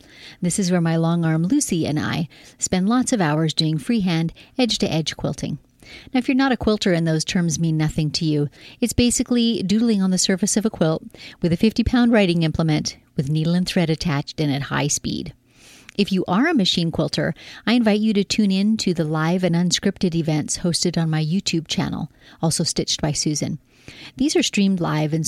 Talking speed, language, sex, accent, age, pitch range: 200 wpm, English, female, American, 30-49, 160-205 Hz